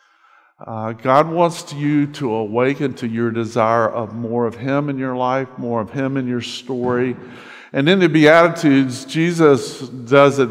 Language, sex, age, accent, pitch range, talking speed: English, male, 50-69, American, 125-155 Hz, 165 wpm